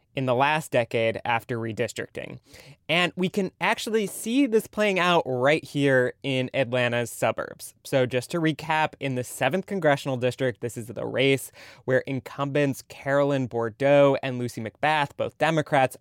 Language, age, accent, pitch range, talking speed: English, 20-39, American, 120-160 Hz, 155 wpm